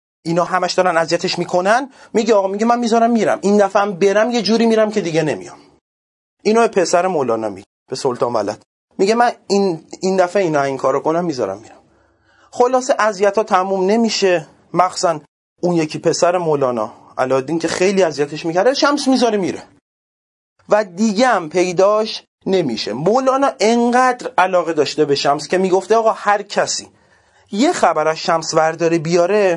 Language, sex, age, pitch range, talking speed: Persian, male, 30-49, 165-225 Hz, 155 wpm